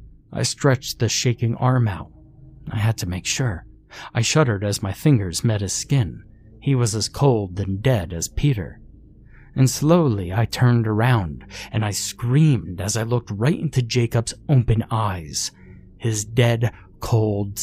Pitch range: 100-120 Hz